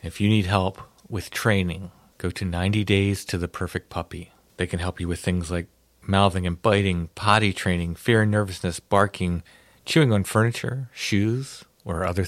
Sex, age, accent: male, 40-59, American